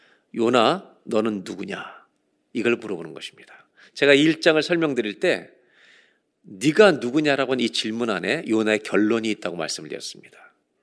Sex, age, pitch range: male, 40-59, 120-160 Hz